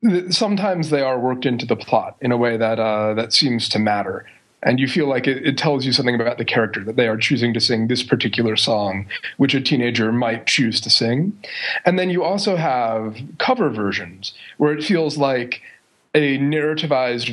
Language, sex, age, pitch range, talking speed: English, male, 30-49, 115-145 Hz, 195 wpm